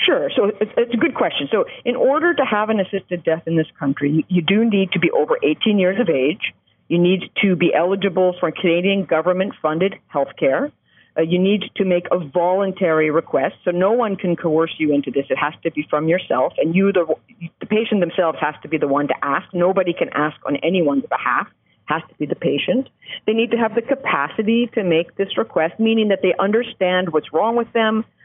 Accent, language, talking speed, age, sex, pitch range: American, English, 215 wpm, 50-69, female, 160-215 Hz